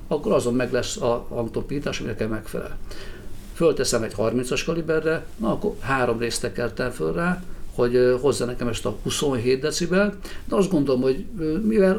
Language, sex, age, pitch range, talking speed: Hungarian, male, 50-69, 115-155 Hz, 160 wpm